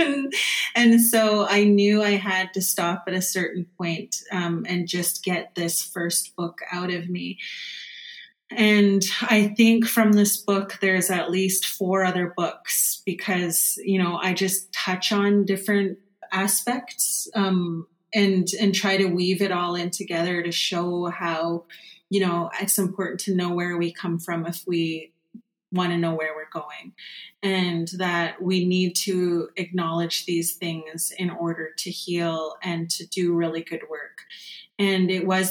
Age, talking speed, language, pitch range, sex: 30-49, 160 wpm, English, 170-195 Hz, female